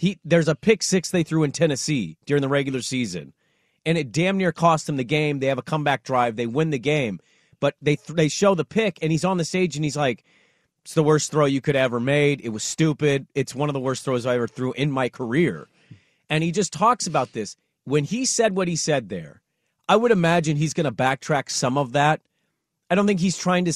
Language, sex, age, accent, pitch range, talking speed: English, male, 30-49, American, 135-170 Hz, 245 wpm